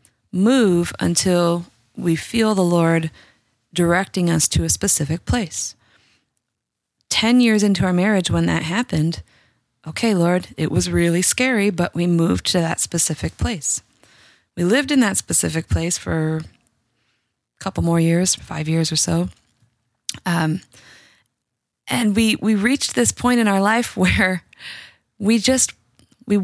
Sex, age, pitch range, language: female, 20-39, 160-215 Hz, English